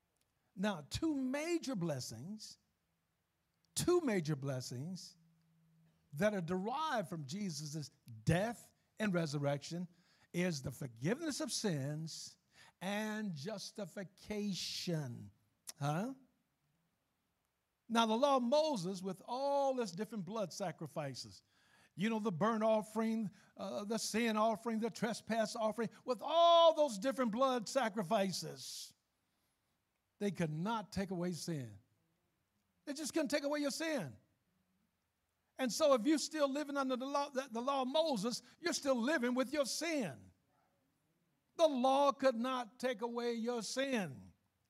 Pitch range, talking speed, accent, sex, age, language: 170-260 Hz, 120 wpm, American, male, 50-69, English